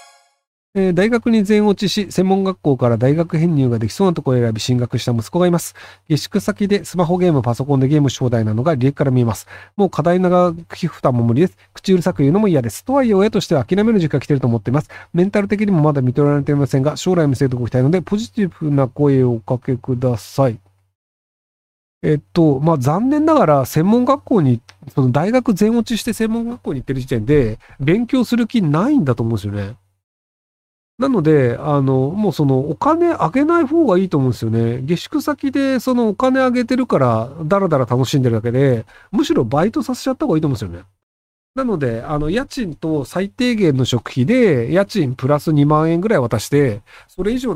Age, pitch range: 40-59, 125-200 Hz